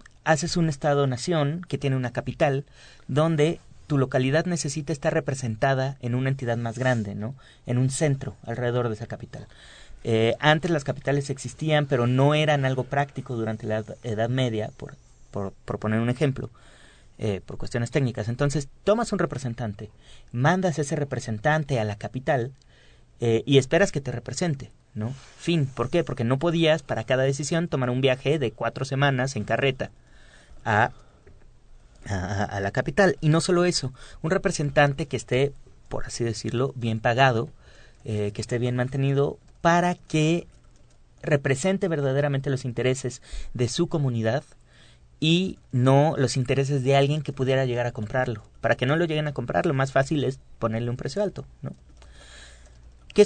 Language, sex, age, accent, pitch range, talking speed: Spanish, male, 30-49, Mexican, 115-150 Hz, 160 wpm